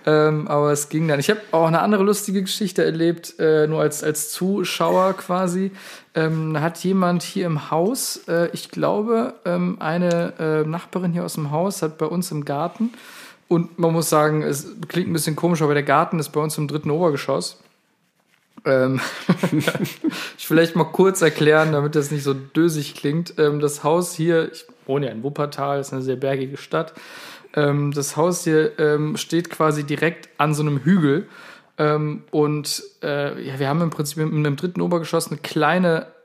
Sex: male